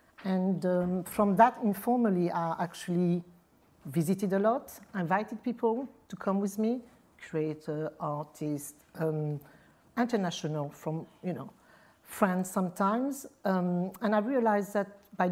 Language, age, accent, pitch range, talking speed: English, 50-69, French, 165-215 Hz, 120 wpm